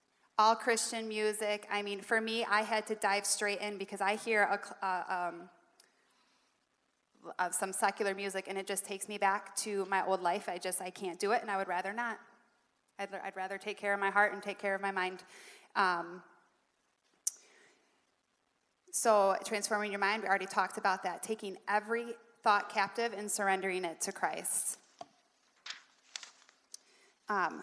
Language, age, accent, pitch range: English, 20-39, American, 185-210 Hz